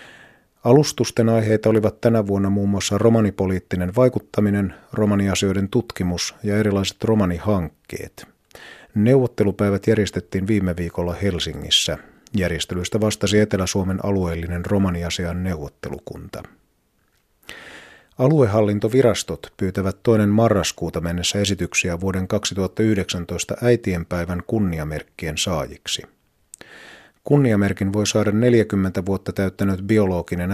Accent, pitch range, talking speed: native, 90-105 Hz, 85 wpm